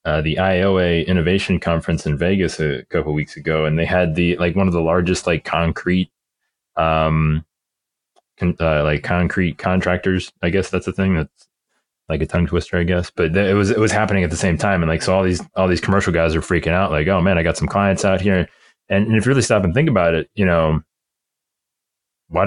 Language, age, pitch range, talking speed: English, 20-39, 80-95 Hz, 230 wpm